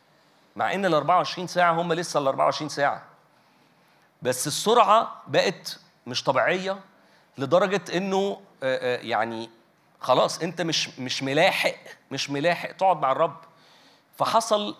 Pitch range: 150-190 Hz